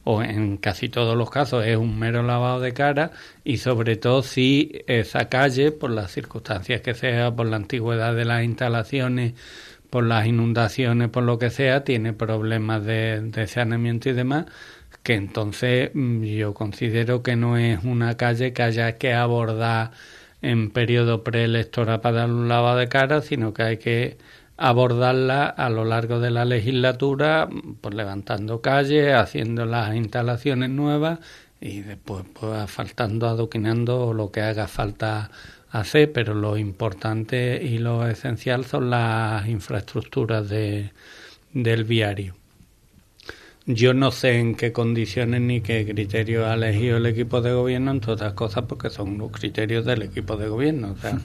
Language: Spanish